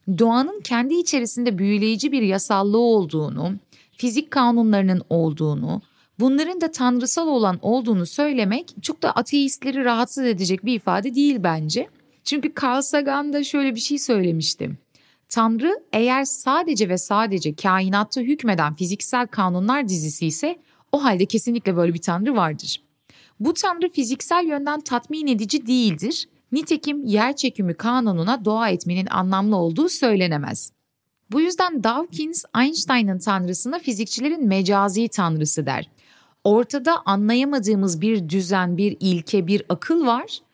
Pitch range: 190-275 Hz